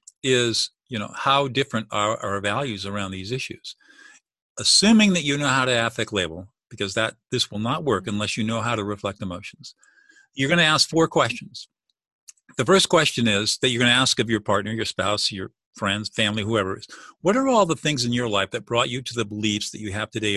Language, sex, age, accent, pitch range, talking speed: English, male, 50-69, American, 105-140 Hz, 225 wpm